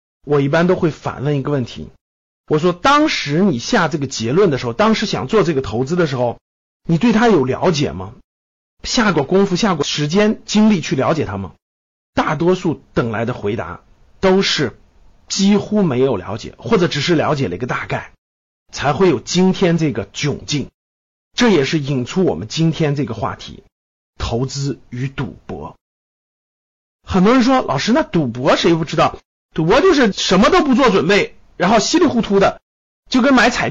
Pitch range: 135-220 Hz